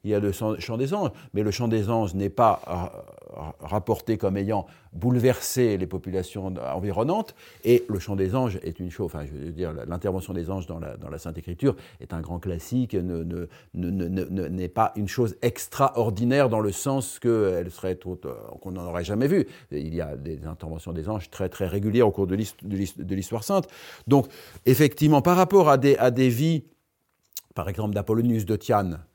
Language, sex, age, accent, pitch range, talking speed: French, male, 50-69, French, 90-120 Hz, 195 wpm